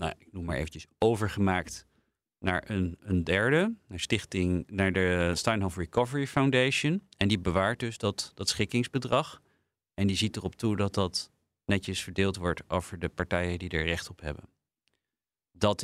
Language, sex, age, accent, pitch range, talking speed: Dutch, male, 40-59, Dutch, 90-115 Hz, 165 wpm